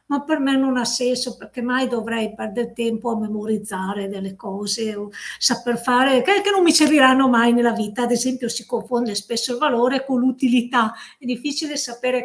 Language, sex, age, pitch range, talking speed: Italian, female, 50-69, 230-275 Hz, 180 wpm